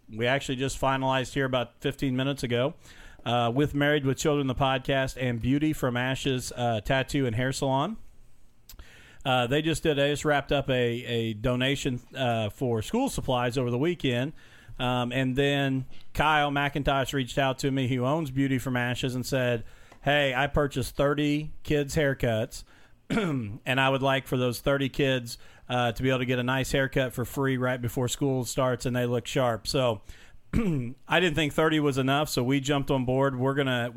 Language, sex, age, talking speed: English, male, 40-59, 185 wpm